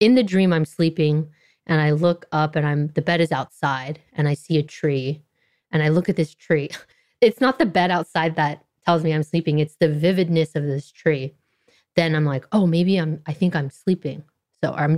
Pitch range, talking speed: 150-180 Hz, 215 wpm